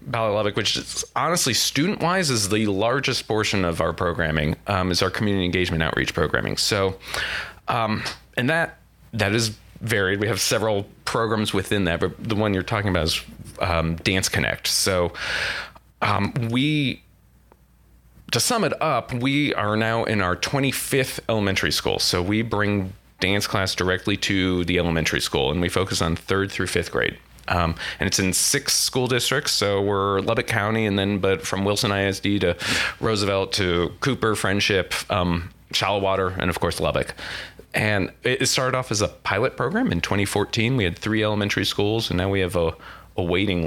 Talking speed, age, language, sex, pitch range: 175 wpm, 30-49, English, male, 90-110 Hz